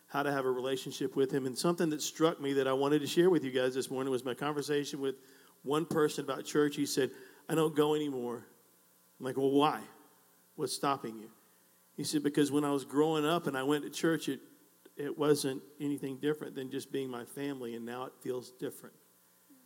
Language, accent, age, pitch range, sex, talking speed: English, American, 50-69, 130-150 Hz, male, 215 wpm